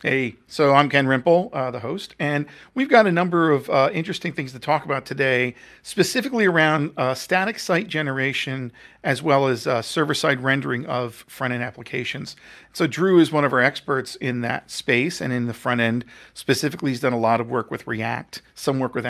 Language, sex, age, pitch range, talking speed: English, male, 40-59, 125-155 Hz, 195 wpm